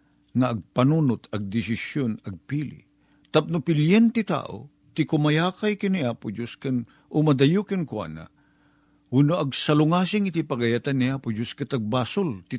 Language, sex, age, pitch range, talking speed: Filipino, male, 50-69, 125-175 Hz, 120 wpm